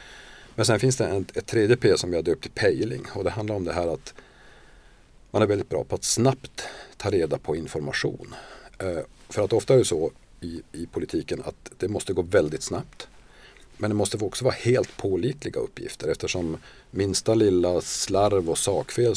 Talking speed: 190 wpm